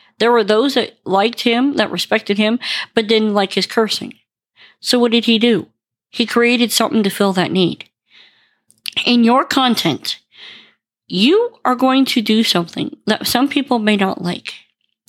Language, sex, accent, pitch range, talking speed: English, female, American, 210-260 Hz, 165 wpm